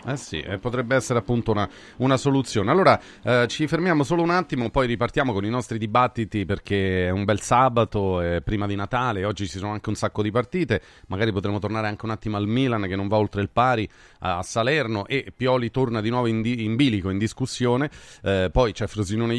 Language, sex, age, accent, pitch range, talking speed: Italian, male, 30-49, native, 105-135 Hz, 215 wpm